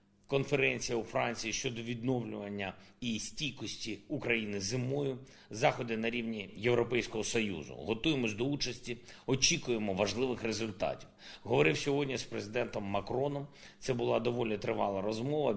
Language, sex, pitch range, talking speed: Ukrainian, male, 105-130 Hz, 115 wpm